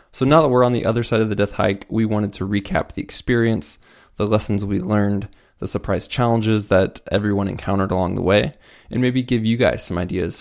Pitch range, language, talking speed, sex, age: 100-115 Hz, English, 220 wpm, male, 20-39